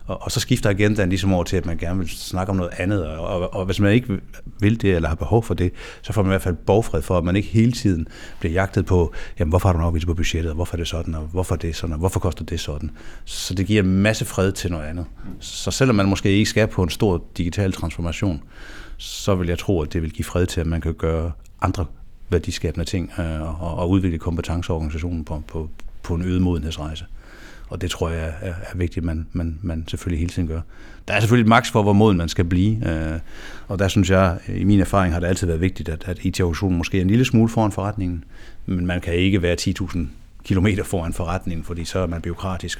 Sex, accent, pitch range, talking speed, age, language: male, native, 85-100 Hz, 250 wpm, 60-79, Danish